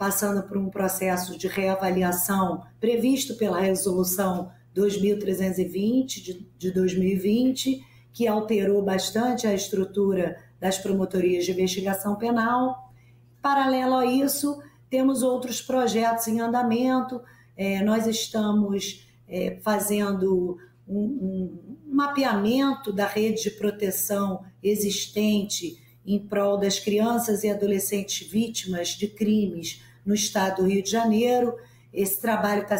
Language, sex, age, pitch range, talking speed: Portuguese, female, 40-59, 185-225 Hz, 105 wpm